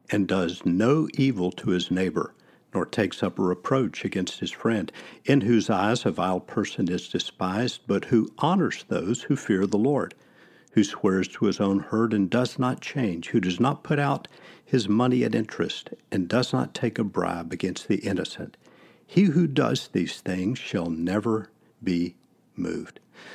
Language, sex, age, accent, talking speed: English, male, 50-69, American, 175 wpm